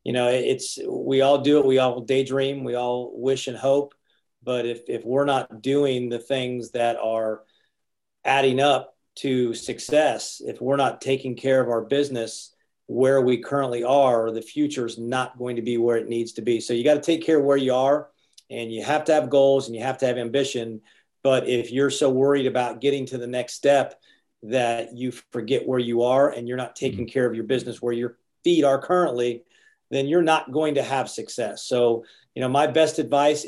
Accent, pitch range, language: American, 120-140 Hz, English